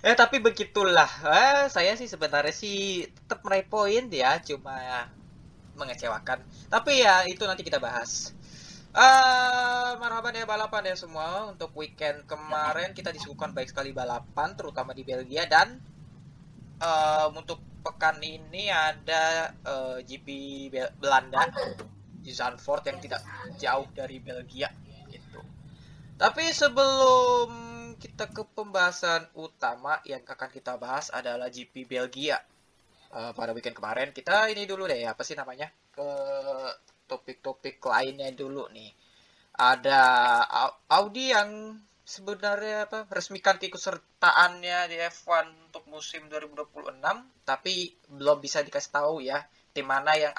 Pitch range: 140-210 Hz